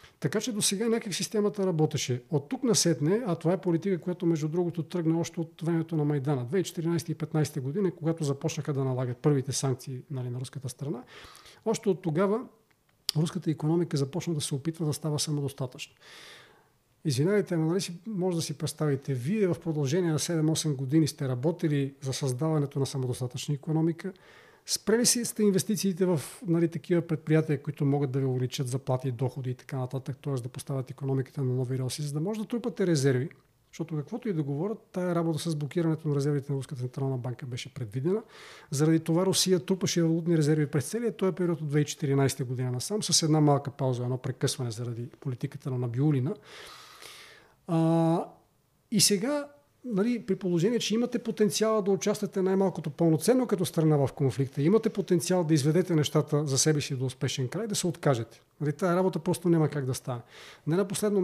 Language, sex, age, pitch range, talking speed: Bulgarian, male, 40-59, 140-185 Hz, 175 wpm